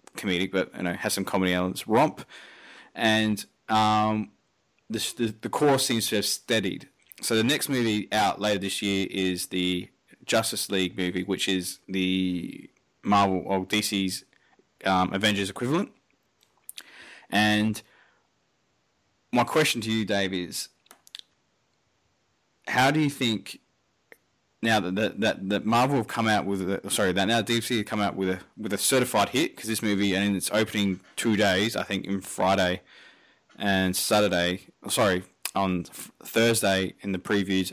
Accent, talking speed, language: Australian, 155 wpm, English